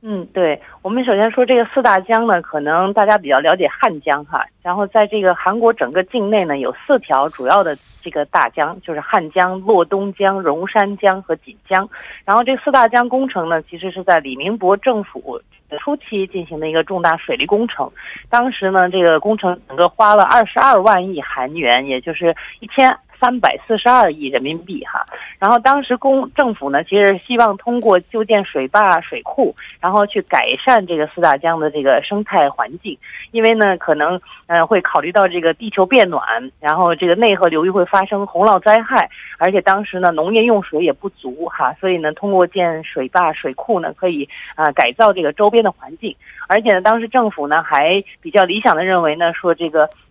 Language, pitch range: Korean, 165-220 Hz